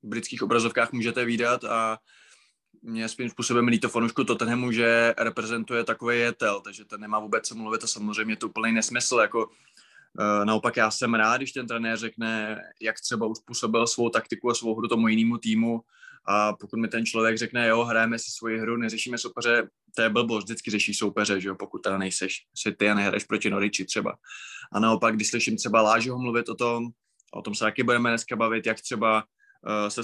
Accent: native